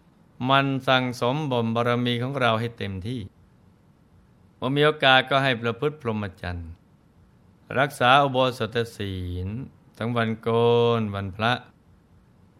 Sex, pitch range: male, 105-130 Hz